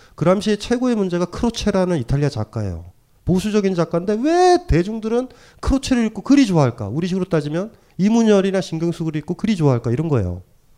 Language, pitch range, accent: Korean, 115-185 Hz, native